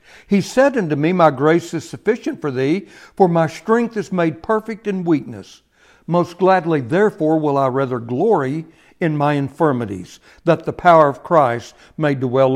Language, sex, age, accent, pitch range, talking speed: English, male, 60-79, American, 130-185 Hz, 165 wpm